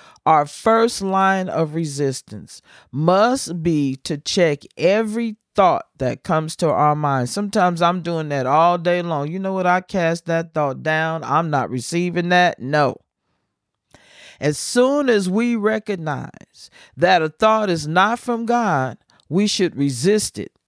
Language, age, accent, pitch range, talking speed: English, 40-59, American, 160-220 Hz, 150 wpm